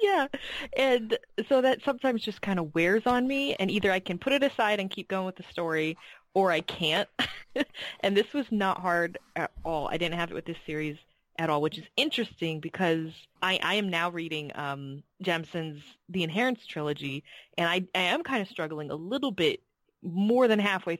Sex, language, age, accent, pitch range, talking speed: female, English, 20-39, American, 155-195 Hz, 200 wpm